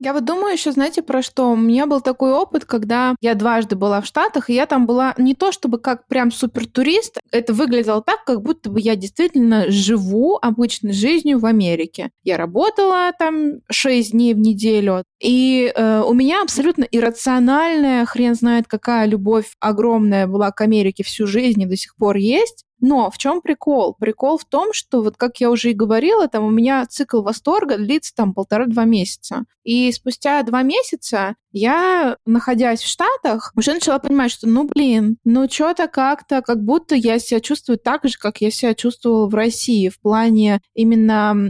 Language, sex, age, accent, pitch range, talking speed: Russian, female, 20-39, native, 220-275 Hz, 180 wpm